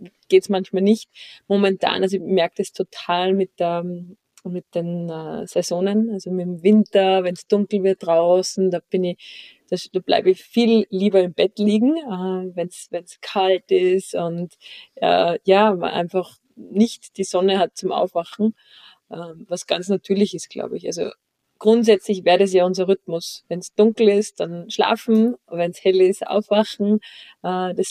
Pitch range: 180-210 Hz